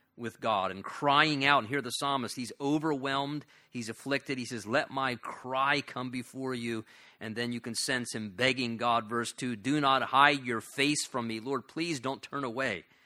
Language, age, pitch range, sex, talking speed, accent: English, 40-59, 115-140 Hz, male, 200 wpm, American